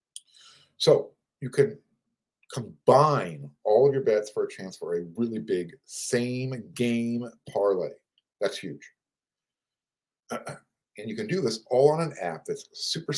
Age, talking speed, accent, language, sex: 40-59, 140 wpm, American, English, male